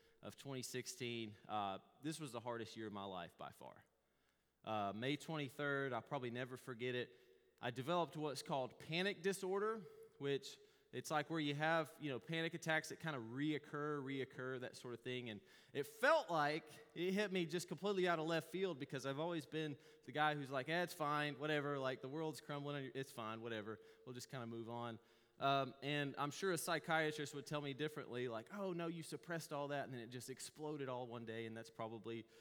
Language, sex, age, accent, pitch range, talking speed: English, male, 30-49, American, 125-165 Hz, 205 wpm